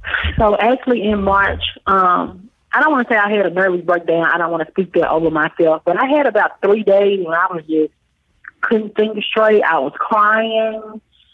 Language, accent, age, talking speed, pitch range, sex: English, American, 30-49, 205 wpm, 170-205 Hz, female